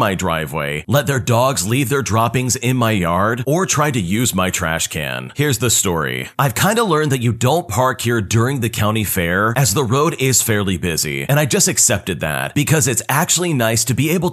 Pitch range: 105-145 Hz